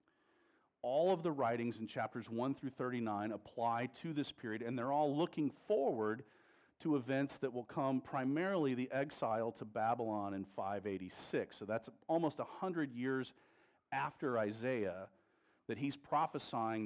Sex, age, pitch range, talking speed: male, 40-59, 105-135 Hz, 140 wpm